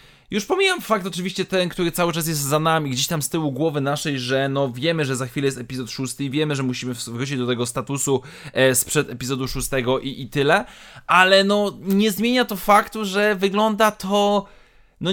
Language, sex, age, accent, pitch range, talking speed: Polish, male, 20-39, native, 130-170 Hz, 200 wpm